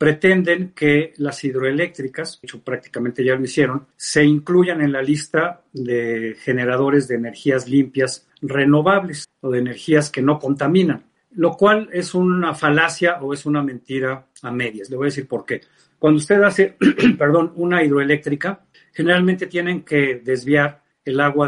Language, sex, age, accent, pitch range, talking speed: Spanish, male, 50-69, Mexican, 130-165 Hz, 155 wpm